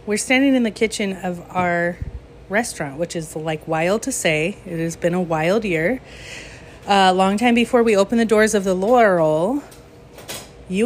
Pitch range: 165-205 Hz